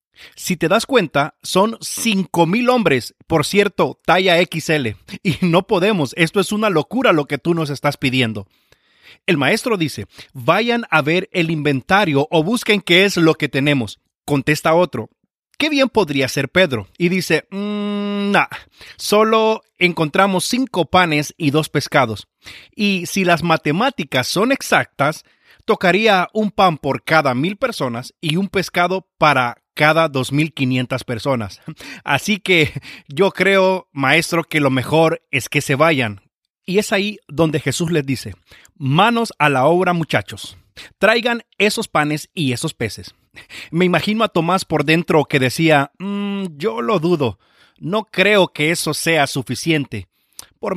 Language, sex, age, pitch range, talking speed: Spanish, male, 30-49, 140-195 Hz, 150 wpm